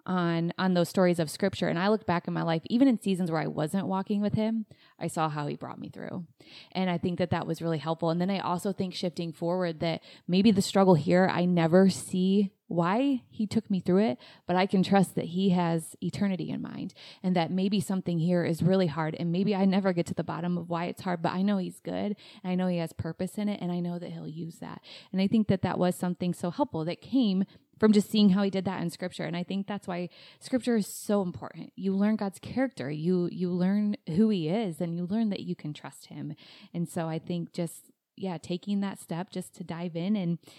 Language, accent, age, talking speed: English, American, 20-39, 250 wpm